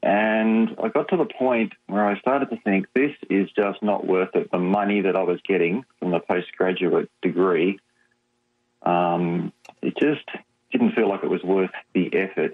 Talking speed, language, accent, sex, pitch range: 180 wpm, English, Australian, male, 90-120 Hz